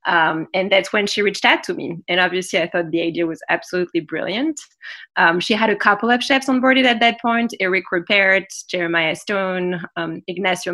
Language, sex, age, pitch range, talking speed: English, female, 20-39, 175-220 Hz, 200 wpm